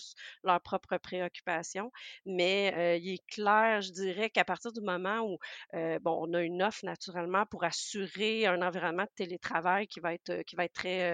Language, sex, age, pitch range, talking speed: French, female, 40-59, 180-210 Hz, 200 wpm